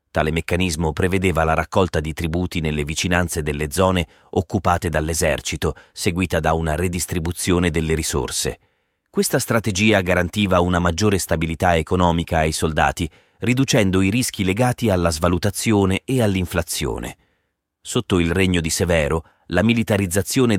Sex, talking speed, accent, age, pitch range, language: male, 125 wpm, native, 30-49, 80-95 Hz, Italian